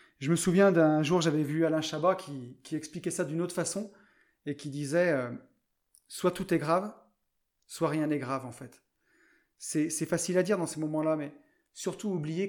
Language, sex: French, male